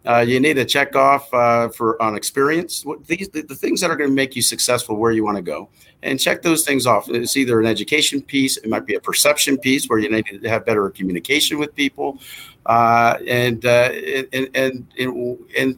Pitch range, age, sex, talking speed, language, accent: 115-135 Hz, 50-69, male, 225 wpm, English, American